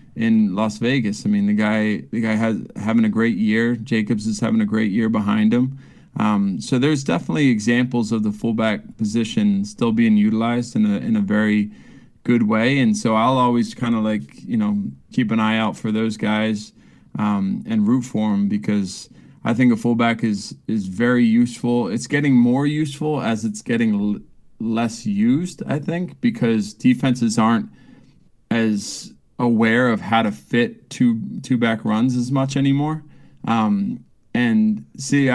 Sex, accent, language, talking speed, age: male, American, English, 170 wpm, 20-39